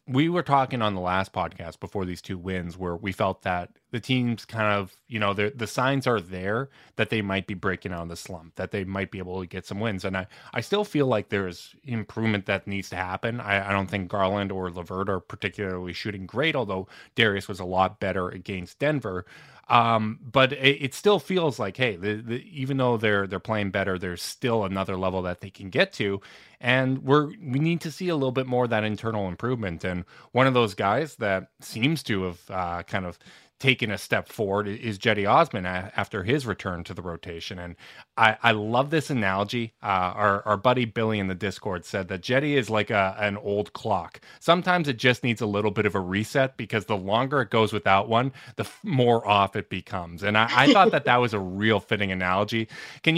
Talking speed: 220 wpm